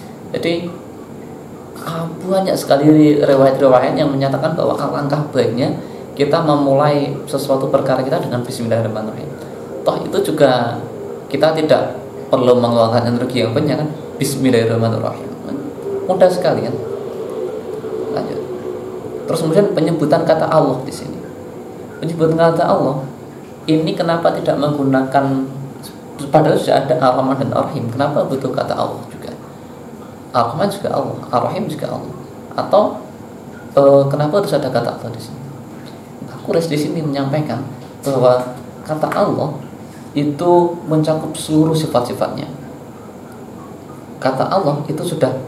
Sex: male